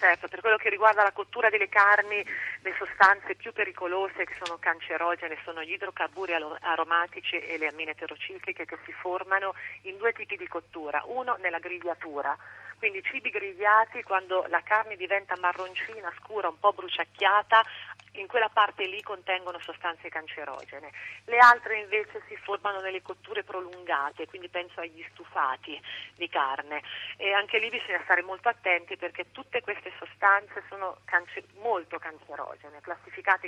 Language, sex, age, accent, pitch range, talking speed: Italian, female, 40-59, native, 170-205 Hz, 150 wpm